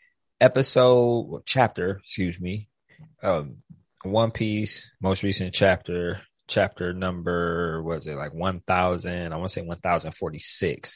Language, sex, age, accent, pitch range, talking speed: English, male, 20-39, American, 90-105 Hz, 115 wpm